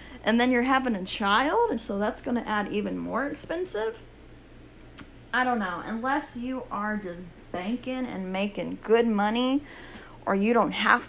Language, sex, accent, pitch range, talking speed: English, female, American, 195-250 Hz, 170 wpm